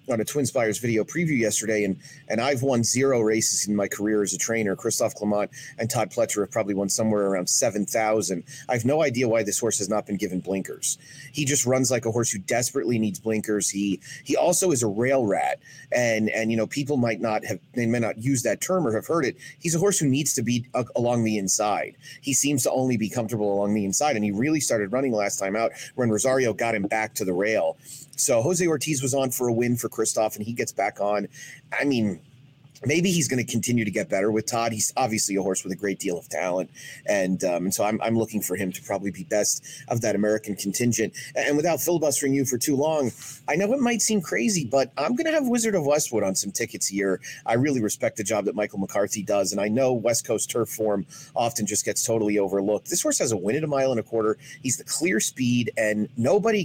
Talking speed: 245 wpm